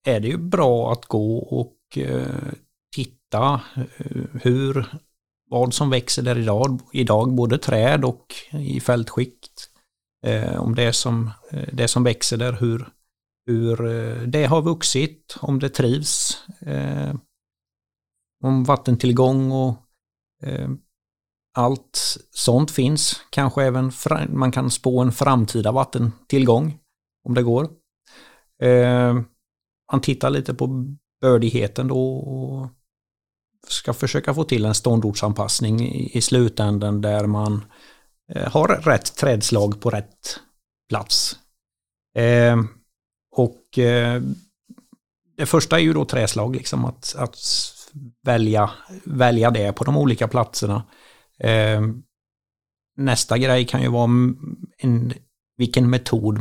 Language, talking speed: Swedish, 105 wpm